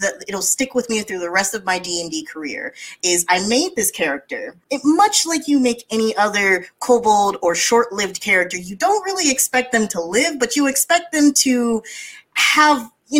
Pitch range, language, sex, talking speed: 185-270 Hz, English, female, 195 wpm